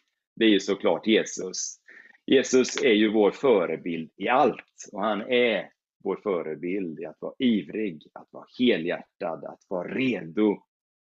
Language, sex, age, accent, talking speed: Swedish, male, 30-49, native, 145 wpm